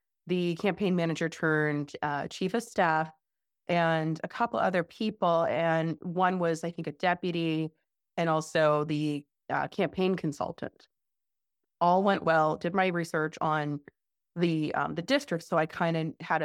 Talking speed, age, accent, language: 155 wpm, 30-49, American, English